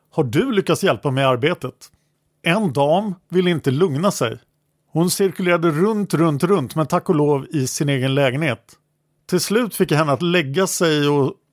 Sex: male